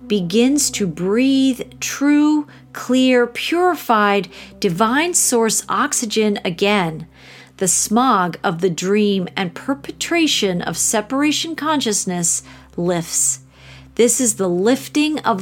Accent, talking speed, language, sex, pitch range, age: American, 100 wpm, English, female, 185-255 Hz, 40-59